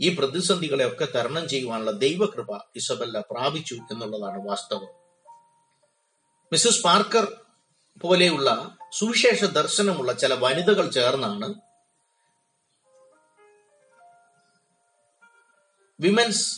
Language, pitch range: Malayalam, 140-220 Hz